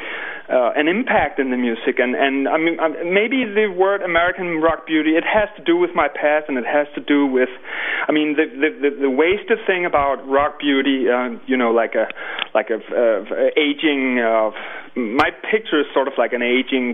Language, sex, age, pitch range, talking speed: English, male, 30-49, 120-160 Hz, 210 wpm